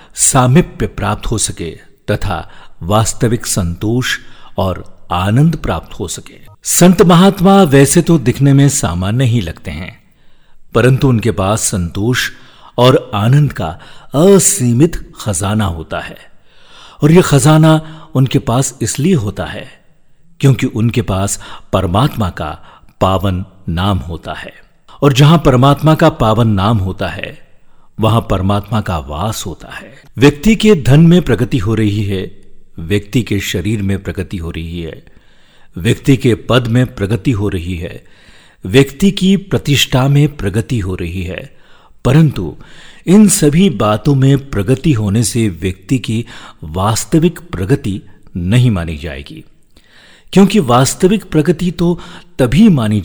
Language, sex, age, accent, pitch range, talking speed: Hindi, male, 50-69, native, 100-140 Hz, 130 wpm